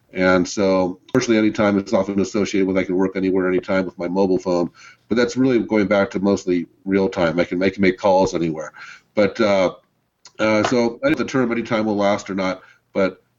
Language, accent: English, American